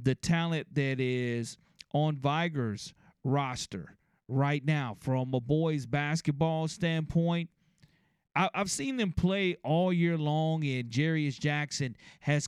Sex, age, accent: male, 40-59, American